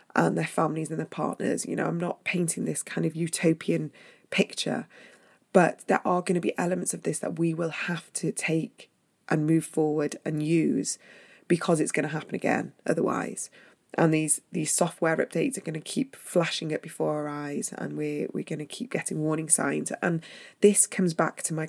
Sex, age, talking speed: female, 20-39, 200 wpm